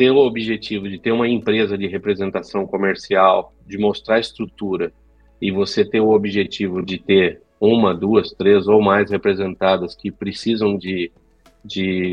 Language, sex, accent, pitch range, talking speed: Portuguese, male, Brazilian, 100-120 Hz, 150 wpm